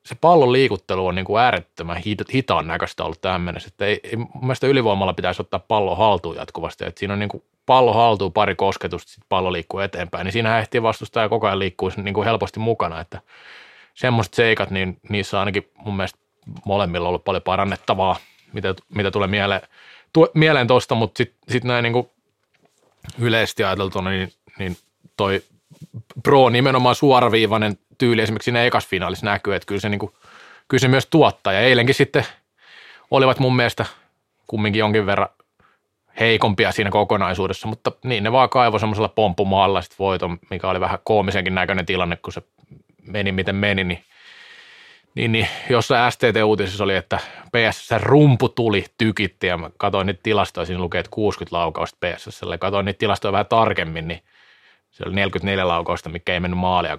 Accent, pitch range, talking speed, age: native, 95-120 Hz, 160 wpm, 20-39